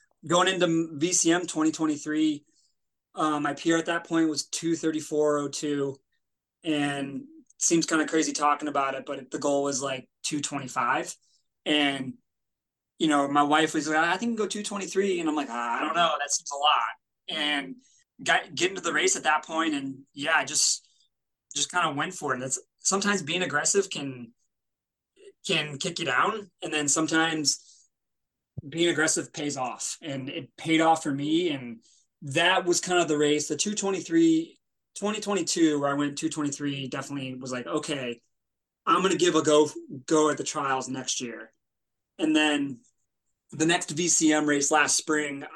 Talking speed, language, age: 175 wpm, English, 20-39